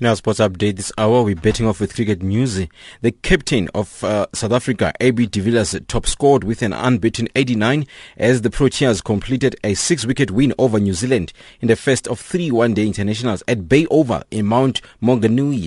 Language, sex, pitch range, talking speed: English, male, 105-135 Hz, 190 wpm